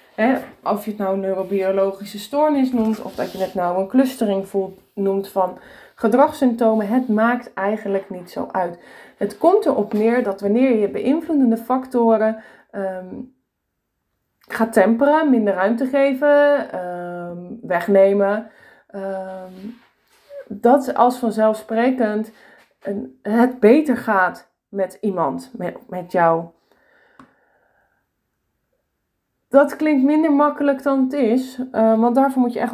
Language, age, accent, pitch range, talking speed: Dutch, 20-39, Dutch, 190-255 Hz, 125 wpm